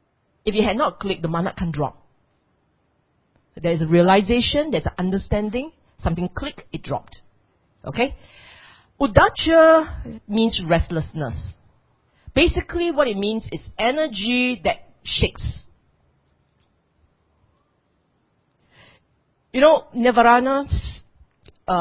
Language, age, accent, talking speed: English, 40-59, Malaysian, 100 wpm